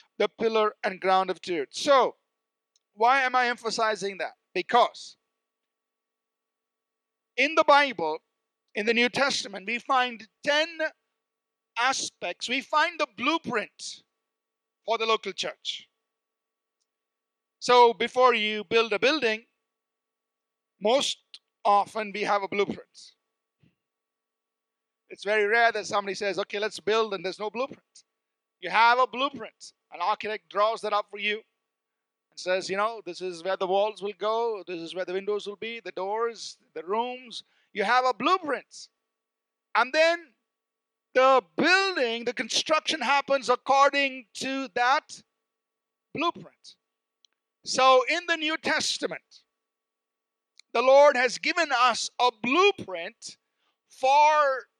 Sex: male